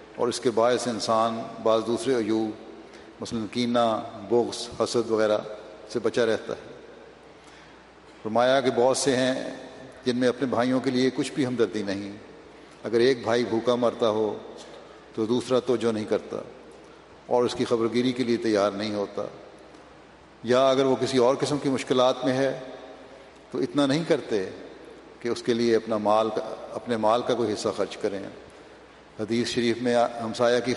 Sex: male